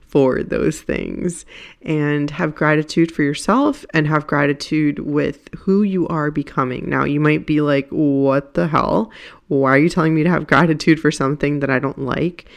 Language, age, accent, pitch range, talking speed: English, 20-39, American, 145-175 Hz, 180 wpm